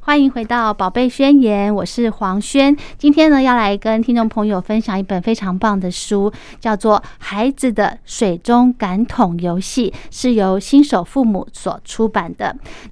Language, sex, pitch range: Chinese, female, 200-250 Hz